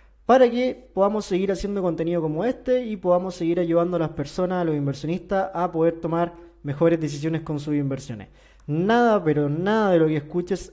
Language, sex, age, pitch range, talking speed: Spanish, male, 20-39, 155-190 Hz, 185 wpm